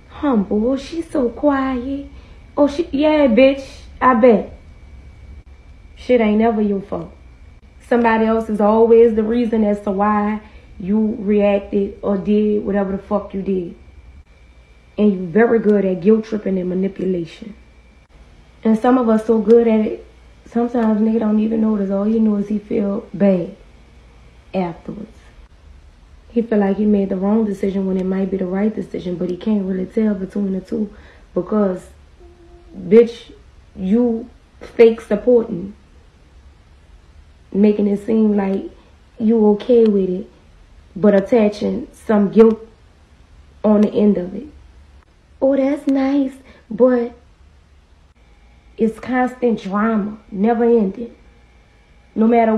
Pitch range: 180-230 Hz